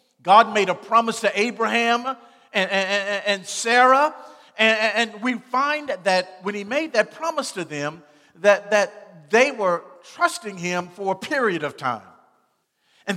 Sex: male